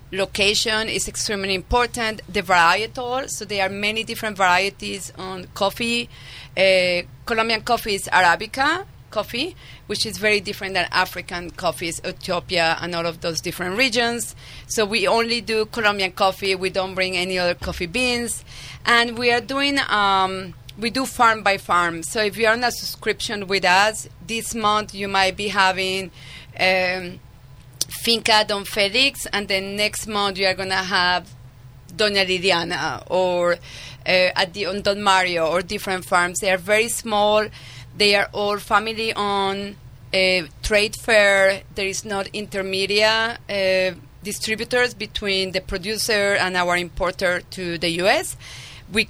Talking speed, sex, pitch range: 150 wpm, female, 180-215 Hz